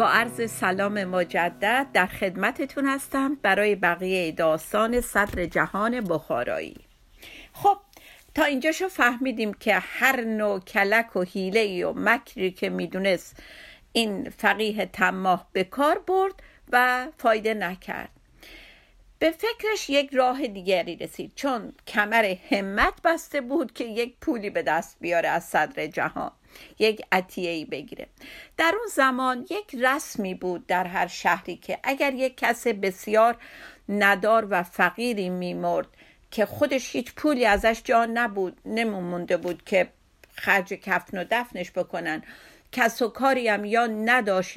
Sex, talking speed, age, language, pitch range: female, 130 wpm, 50-69, Persian, 190-265 Hz